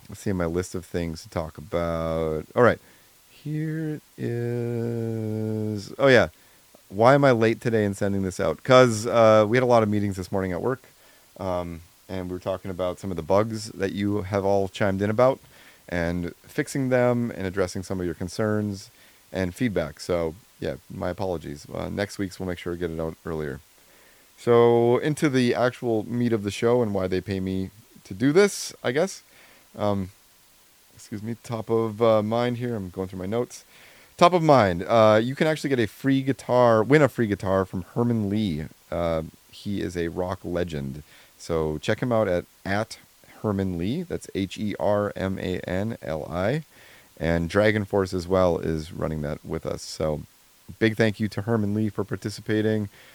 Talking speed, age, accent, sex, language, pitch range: 195 wpm, 30-49, American, male, English, 90-115 Hz